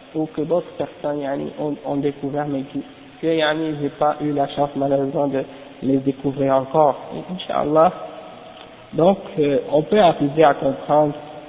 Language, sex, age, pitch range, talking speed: French, male, 50-69, 140-170 Hz, 160 wpm